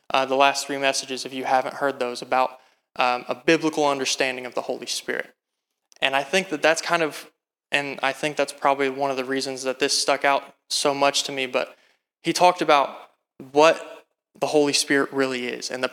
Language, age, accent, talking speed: English, 20-39, American, 205 wpm